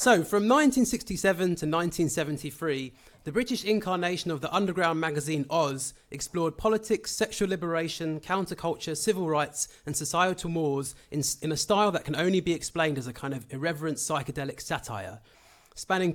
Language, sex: English, male